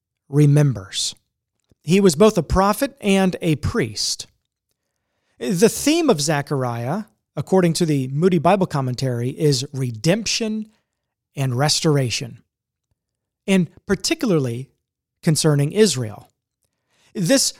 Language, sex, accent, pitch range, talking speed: English, male, American, 135-195 Hz, 95 wpm